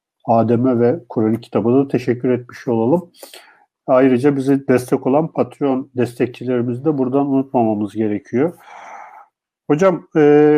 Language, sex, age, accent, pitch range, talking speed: Turkish, male, 50-69, native, 120-160 Hz, 115 wpm